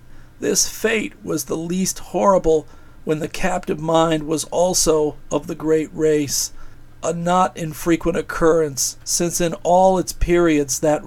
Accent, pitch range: American, 155-180 Hz